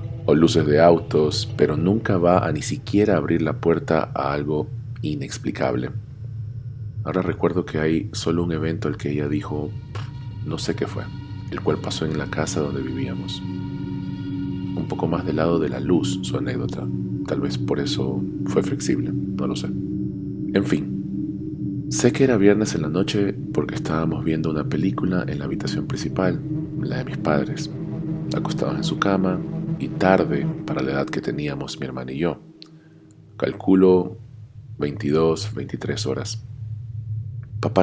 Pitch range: 85-120 Hz